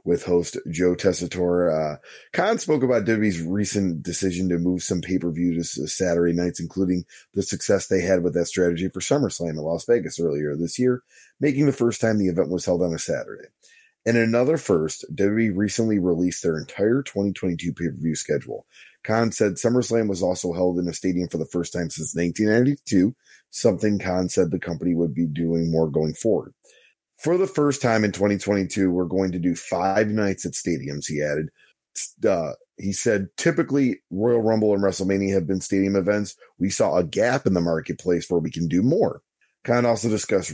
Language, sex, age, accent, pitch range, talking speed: English, male, 30-49, American, 85-110 Hz, 190 wpm